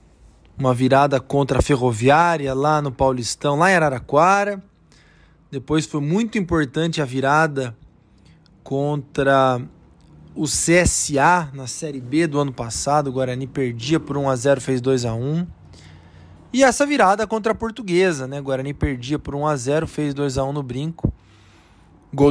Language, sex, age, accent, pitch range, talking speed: Portuguese, male, 20-39, Brazilian, 135-175 Hz, 135 wpm